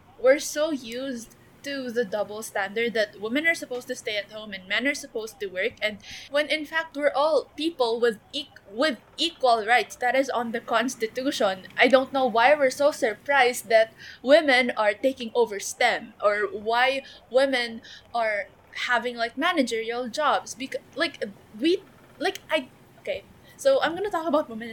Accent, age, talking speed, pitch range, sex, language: Filipino, 20-39, 170 wpm, 235-320 Hz, female, English